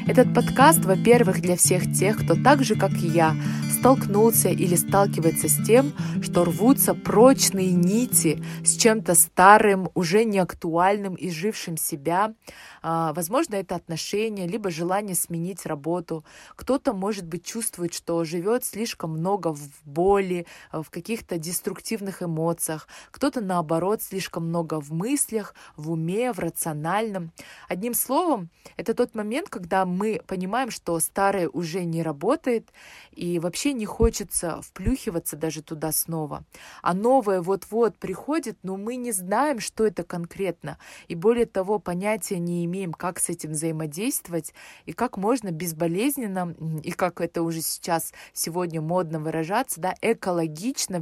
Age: 20-39